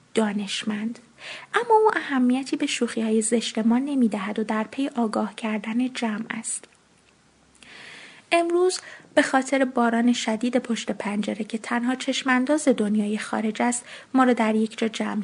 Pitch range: 225-255 Hz